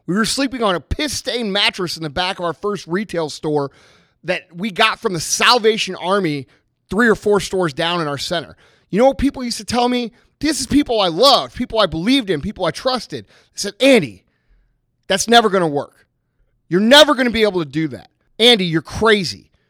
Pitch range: 175-250 Hz